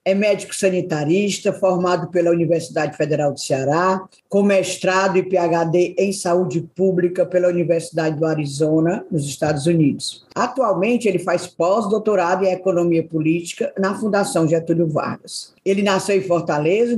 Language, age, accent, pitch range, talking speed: Portuguese, 20-39, Brazilian, 170-210 Hz, 130 wpm